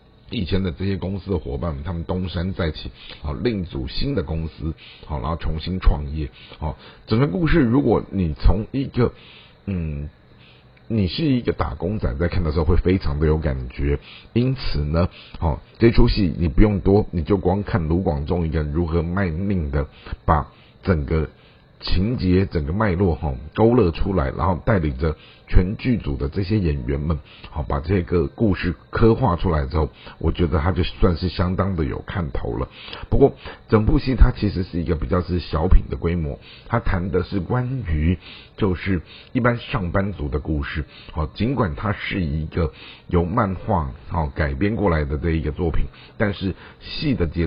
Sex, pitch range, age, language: male, 75-100 Hz, 50-69, Chinese